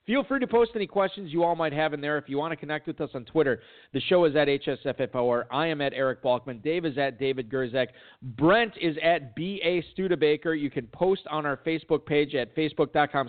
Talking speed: 225 wpm